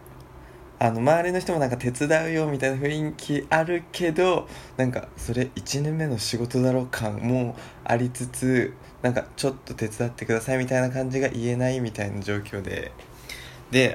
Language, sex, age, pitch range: Japanese, male, 20-39, 110-140 Hz